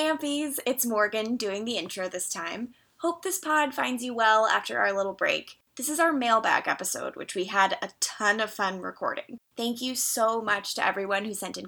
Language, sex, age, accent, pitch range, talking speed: English, female, 20-39, American, 190-265 Hz, 205 wpm